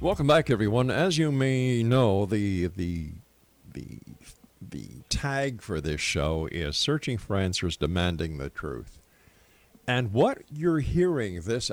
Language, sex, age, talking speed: English, male, 50-69, 140 wpm